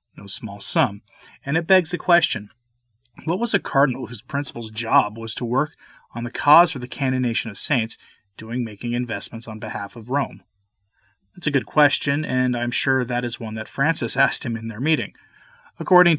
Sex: male